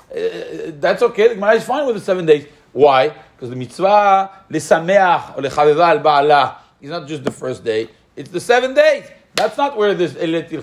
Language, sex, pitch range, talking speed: English, male, 150-225 Hz, 190 wpm